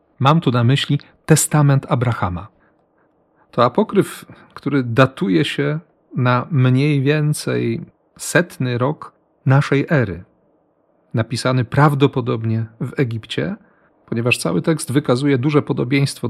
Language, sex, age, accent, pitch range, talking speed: Polish, male, 40-59, native, 115-150 Hz, 105 wpm